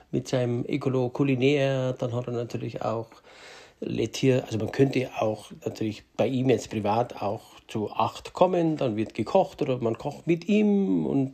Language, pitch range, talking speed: German, 120-150 Hz, 170 wpm